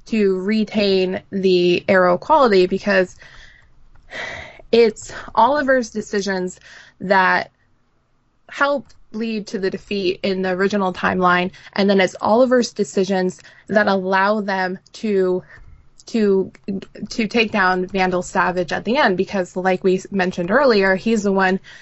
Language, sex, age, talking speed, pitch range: English, female, 20-39, 125 wpm, 185-210 Hz